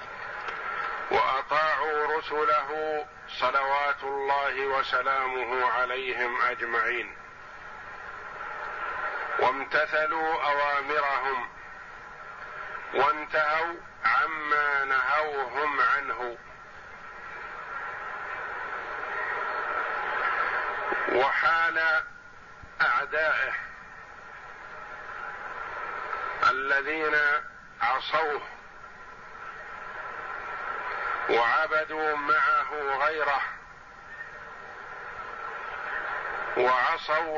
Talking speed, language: 35 wpm, Arabic